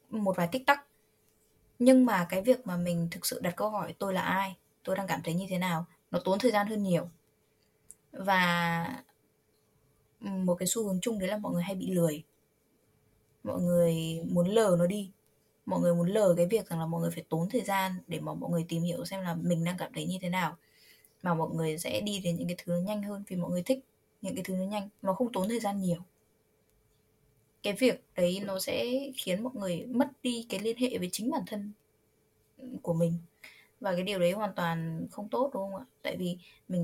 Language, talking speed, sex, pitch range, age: Vietnamese, 225 wpm, female, 170-210 Hz, 20-39